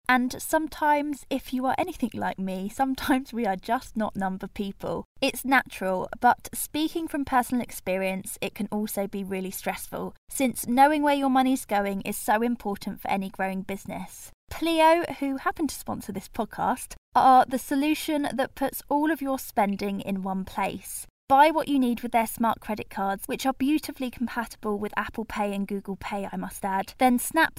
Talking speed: 185 wpm